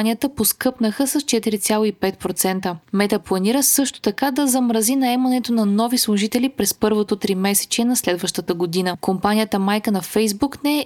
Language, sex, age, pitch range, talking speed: Bulgarian, female, 20-39, 200-260 Hz, 145 wpm